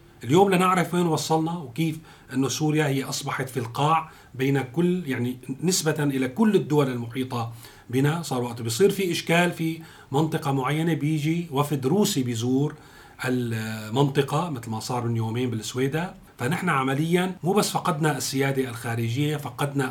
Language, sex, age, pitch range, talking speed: Arabic, male, 40-59, 130-160 Hz, 140 wpm